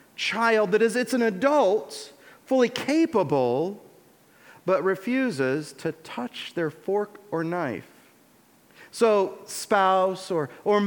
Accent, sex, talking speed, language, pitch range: American, male, 110 wpm, English, 175-240 Hz